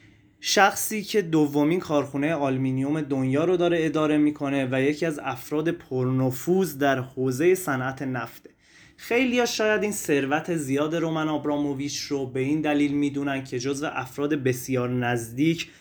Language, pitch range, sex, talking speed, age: Persian, 130-160 Hz, male, 135 wpm, 20-39